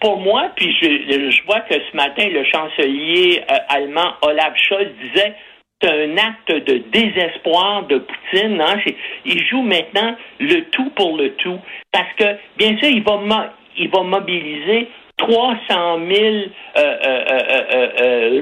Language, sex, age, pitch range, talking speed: French, male, 60-79, 180-280 Hz, 155 wpm